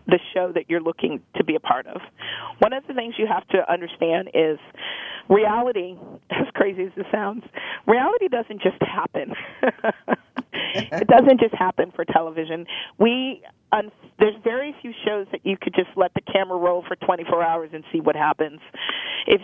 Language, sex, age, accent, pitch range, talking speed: English, female, 40-59, American, 170-215 Hz, 175 wpm